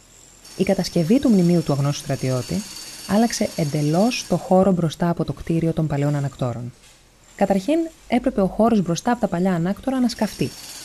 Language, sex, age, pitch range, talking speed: Greek, female, 20-39, 145-220 Hz, 160 wpm